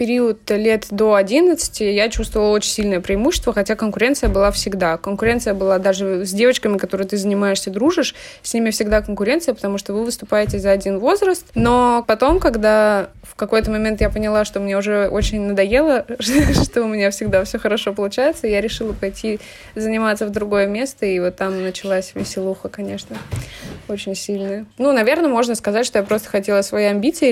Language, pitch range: Russian, 195-235 Hz